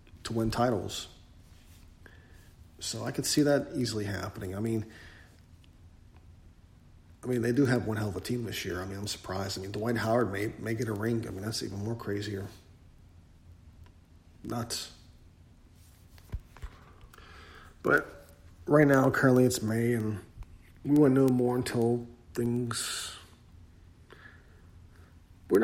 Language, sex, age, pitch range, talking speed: English, male, 40-59, 85-120 Hz, 135 wpm